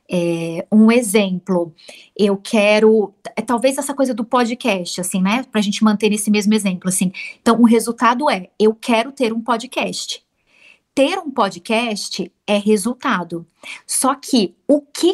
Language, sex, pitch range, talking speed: Portuguese, female, 210-270 Hz, 145 wpm